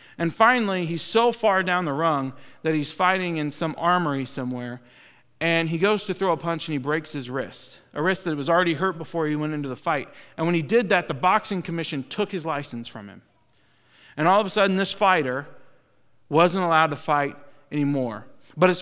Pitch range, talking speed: 150-185 Hz, 210 wpm